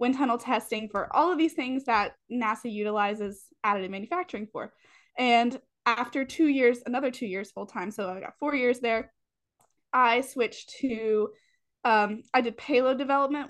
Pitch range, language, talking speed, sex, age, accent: 215-265 Hz, English, 165 wpm, female, 20-39, American